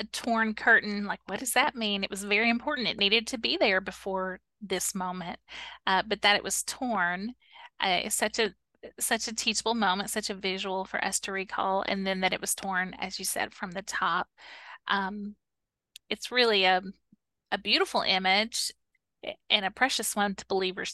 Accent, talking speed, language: American, 185 wpm, English